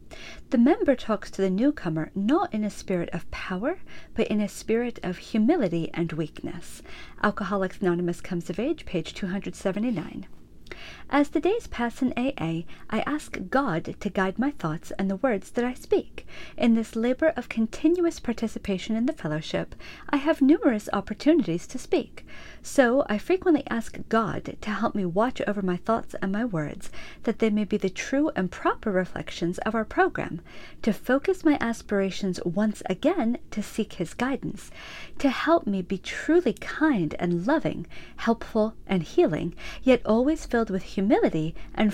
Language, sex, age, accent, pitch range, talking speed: English, female, 40-59, American, 185-260 Hz, 165 wpm